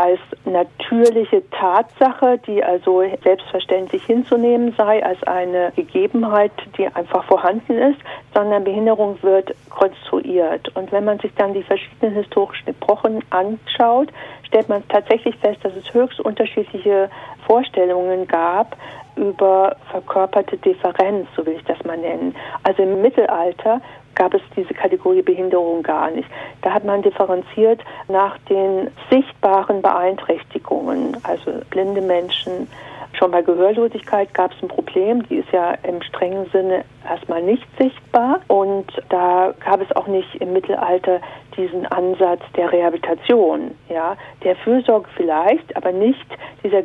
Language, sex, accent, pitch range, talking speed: German, female, German, 185-225 Hz, 135 wpm